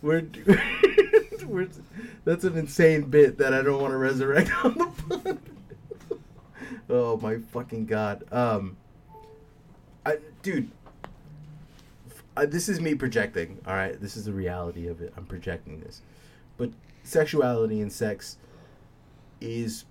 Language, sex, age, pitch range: English, male, 30-49, 100-145 Hz